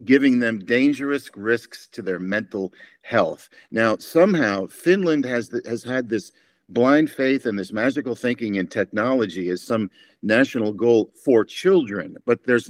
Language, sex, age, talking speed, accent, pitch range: Finnish, male, 50-69, 150 wpm, American, 100-135 Hz